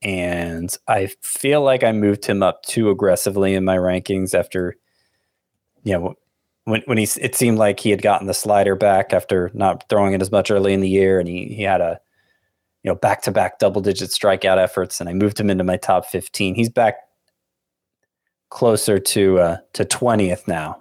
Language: English